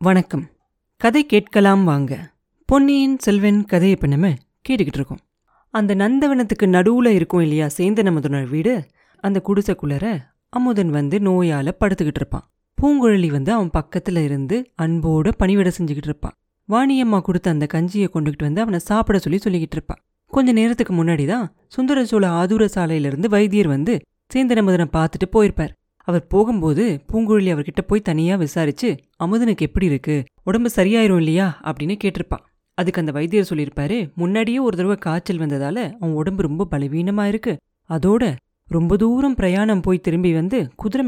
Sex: female